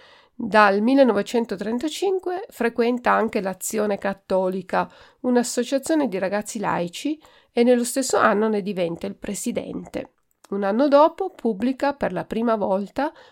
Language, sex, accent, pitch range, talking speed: Italian, female, native, 190-255 Hz, 115 wpm